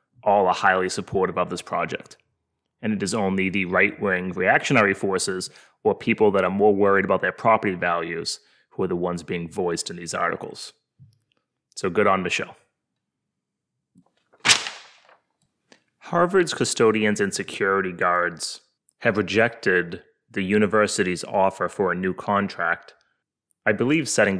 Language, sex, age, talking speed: English, male, 30-49, 135 wpm